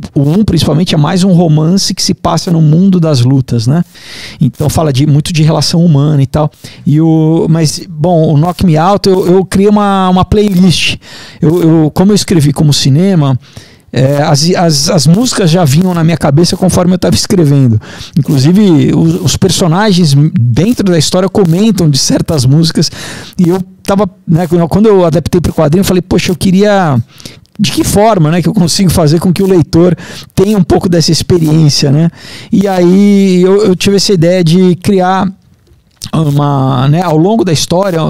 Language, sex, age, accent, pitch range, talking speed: Portuguese, male, 50-69, Brazilian, 150-185 Hz, 185 wpm